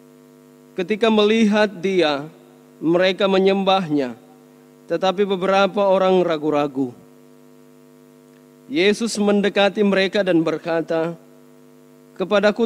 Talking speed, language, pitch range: 70 wpm, Indonesian, 165-210 Hz